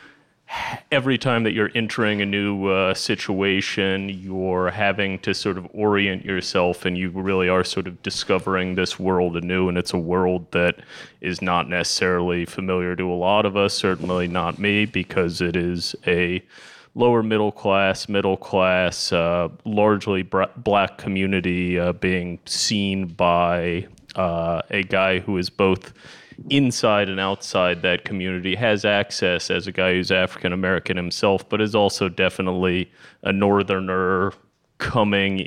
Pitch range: 90-100 Hz